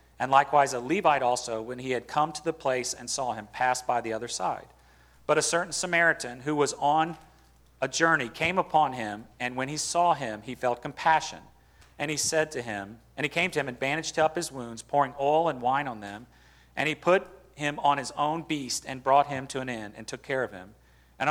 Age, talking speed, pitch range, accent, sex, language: 40-59, 230 wpm, 105-150 Hz, American, male, English